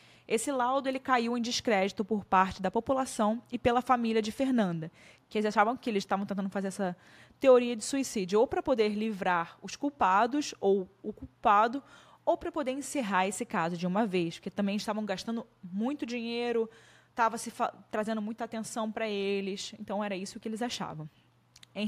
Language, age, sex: Portuguese, 20-39, female